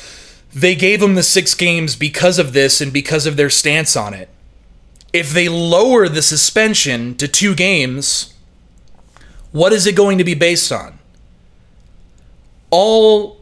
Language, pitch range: English, 145-190 Hz